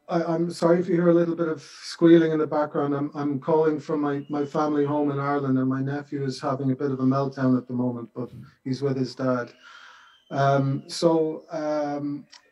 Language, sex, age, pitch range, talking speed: English, male, 40-59, 135-160 Hz, 215 wpm